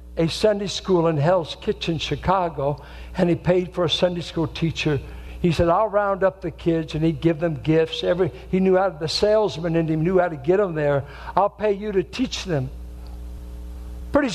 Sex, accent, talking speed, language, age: male, American, 205 wpm, English, 60-79